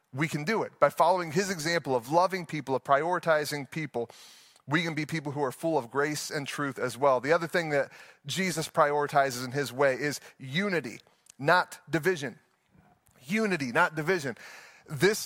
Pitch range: 145-185 Hz